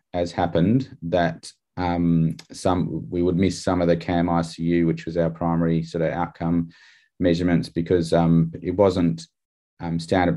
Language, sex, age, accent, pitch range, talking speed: English, male, 30-49, Australian, 85-95 Hz, 155 wpm